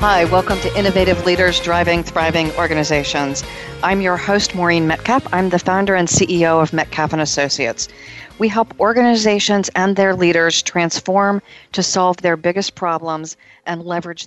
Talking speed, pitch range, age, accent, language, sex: 145 wpm, 155-185 Hz, 40-59, American, English, female